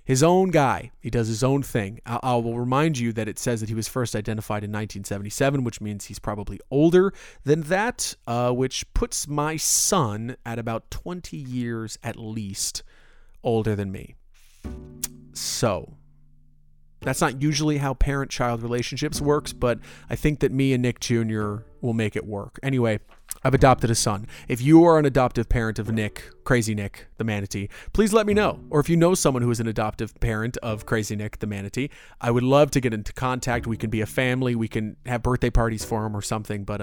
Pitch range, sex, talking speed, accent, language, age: 110-140 Hz, male, 200 wpm, American, English, 30-49